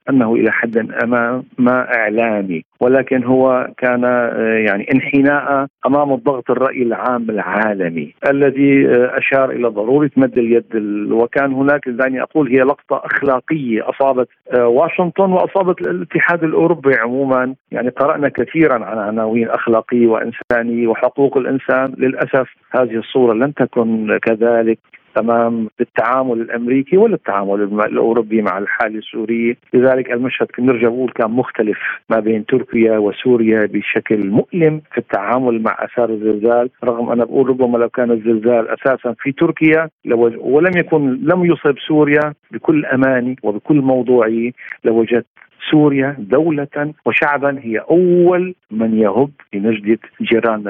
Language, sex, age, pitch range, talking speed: Arabic, male, 50-69, 115-135 Hz, 125 wpm